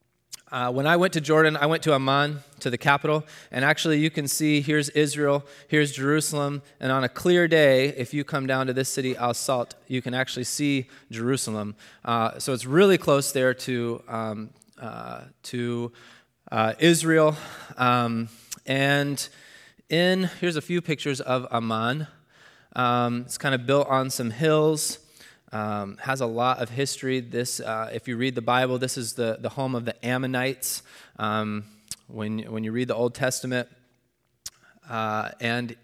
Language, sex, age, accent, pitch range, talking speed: English, male, 20-39, American, 115-145 Hz, 165 wpm